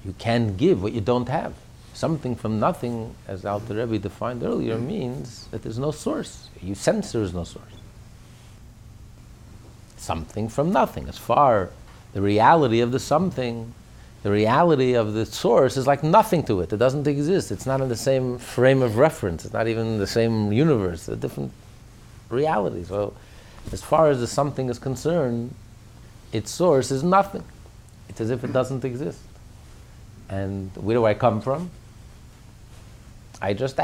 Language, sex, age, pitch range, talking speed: English, male, 50-69, 110-140 Hz, 165 wpm